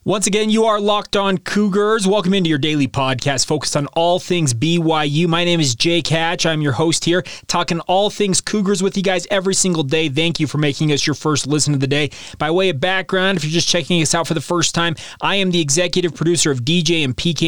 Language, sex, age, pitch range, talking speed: English, male, 30-49, 145-180 Hz, 240 wpm